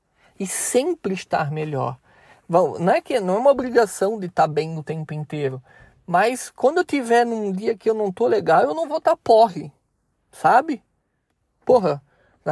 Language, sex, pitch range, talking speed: Portuguese, male, 170-240 Hz, 180 wpm